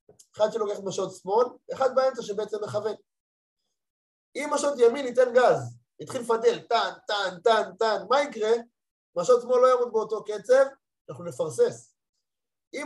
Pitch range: 185-290 Hz